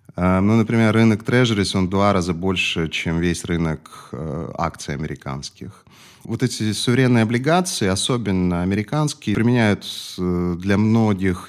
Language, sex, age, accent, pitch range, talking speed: Russian, male, 30-49, native, 90-115 Hz, 120 wpm